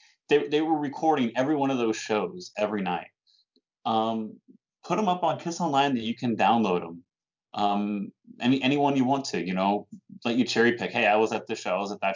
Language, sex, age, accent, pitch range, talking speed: English, male, 30-49, American, 110-160 Hz, 220 wpm